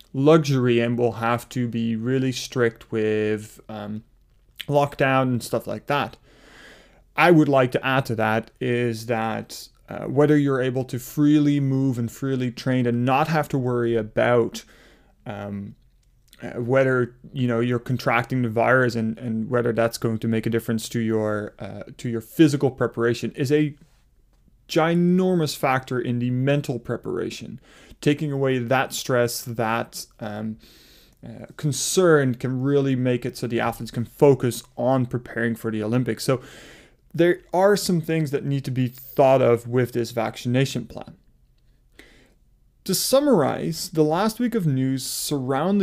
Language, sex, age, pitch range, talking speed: English, male, 30-49, 115-140 Hz, 155 wpm